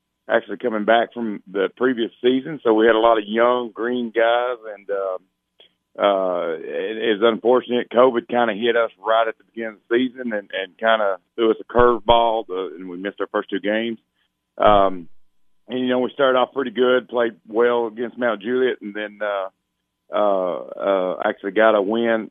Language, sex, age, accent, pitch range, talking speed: English, male, 50-69, American, 105-125 Hz, 195 wpm